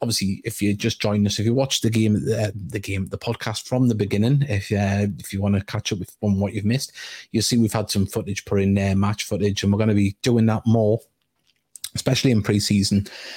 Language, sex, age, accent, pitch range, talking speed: English, male, 30-49, British, 100-115 Hz, 240 wpm